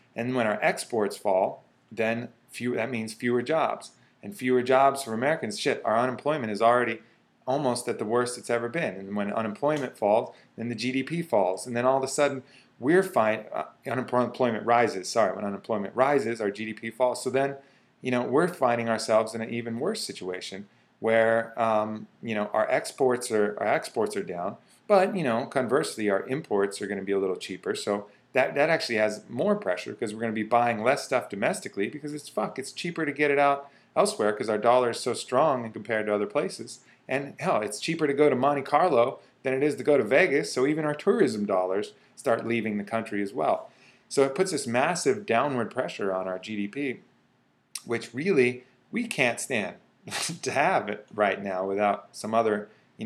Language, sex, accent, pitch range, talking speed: English, male, American, 105-130 Hz, 200 wpm